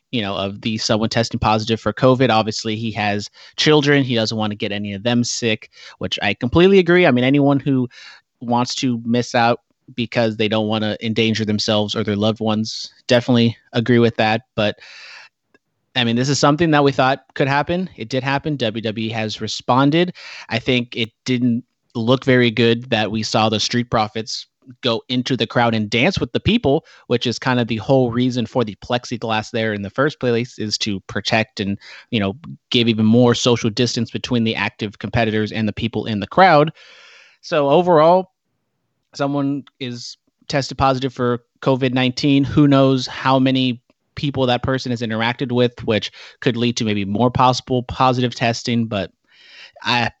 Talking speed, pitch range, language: 185 wpm, 110-130 Hz, English